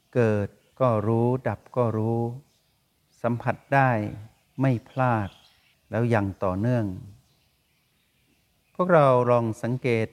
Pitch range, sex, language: 105-130 Hz, male, Thai